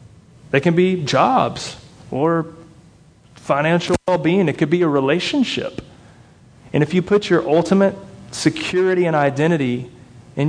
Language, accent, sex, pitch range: English, American, male, 125-160 Hz